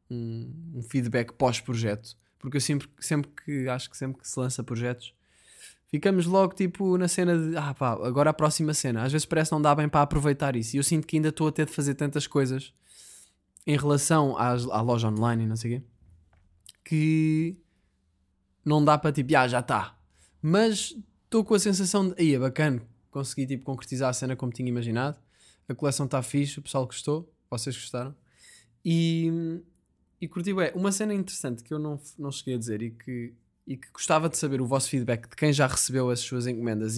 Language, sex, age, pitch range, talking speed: Portuguese, male, 20-39, 115-155 Hz, 200 wpm